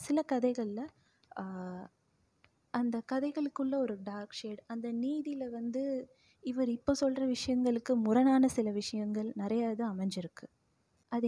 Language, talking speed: Tamil, 110 wpm